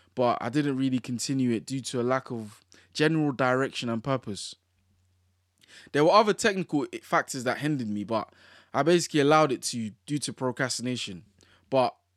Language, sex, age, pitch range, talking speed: English, male, 20-39, 115-155 Hz, 165 wpm